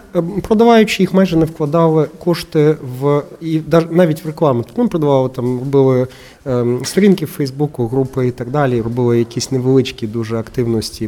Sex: male